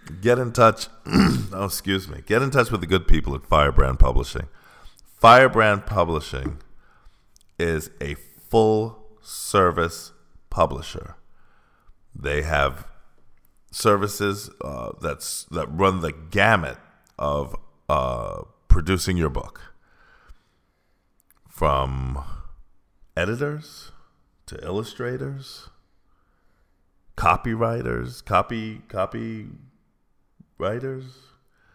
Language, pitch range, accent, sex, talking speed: English, 75-100 Hz, American, male, 85 wpm